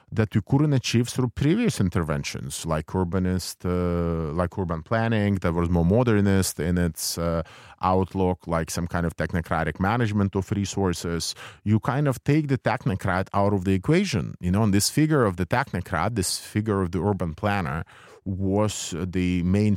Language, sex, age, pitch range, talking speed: Danish, male, 30-49, 90-110 Hz, 170 wpm